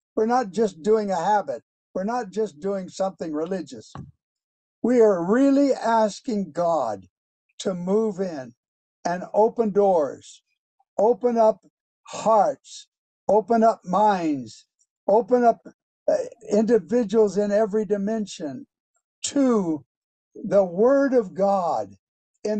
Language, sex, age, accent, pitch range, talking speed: English, male, 60-79, American, 160-225 Hz, 110 wpm